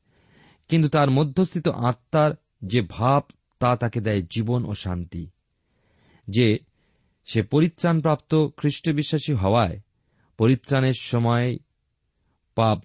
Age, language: 40-59, Bengali